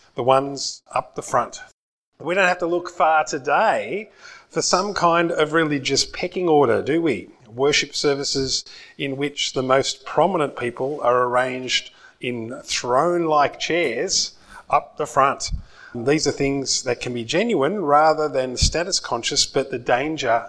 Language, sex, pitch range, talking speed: English, male, 130-165 Hz, 145 wpm